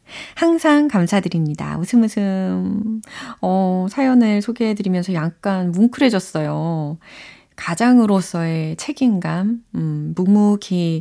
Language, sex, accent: Korean, female, native